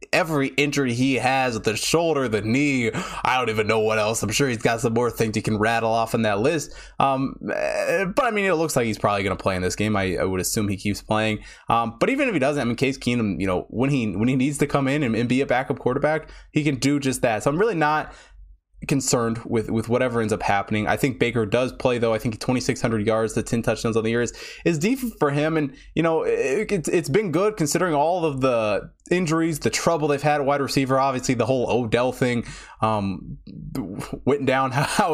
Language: English